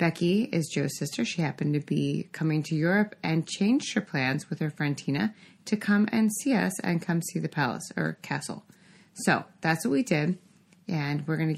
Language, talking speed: English, 205 wpm